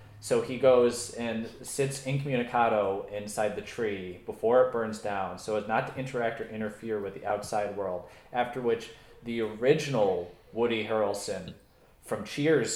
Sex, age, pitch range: male, 20-39, 105-130 Hz